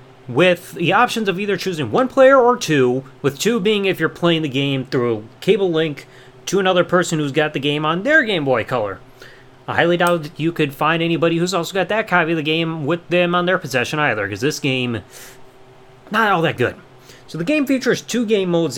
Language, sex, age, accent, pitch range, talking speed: English, male, 30-49, American, 130-180 Hz, 220 wpm